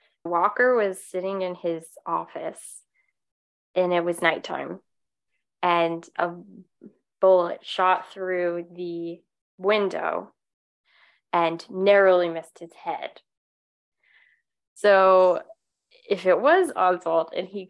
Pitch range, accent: 170-190 Hz, American